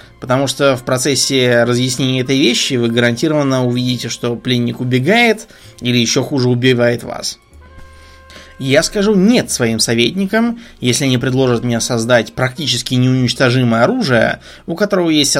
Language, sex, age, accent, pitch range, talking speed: Russian, male, 20-39, native, 120-145 Hz, 135 wpm